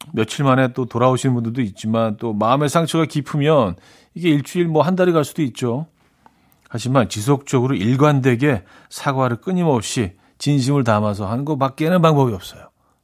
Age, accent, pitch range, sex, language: 40-59, native, 110-155 Hz, male, Korean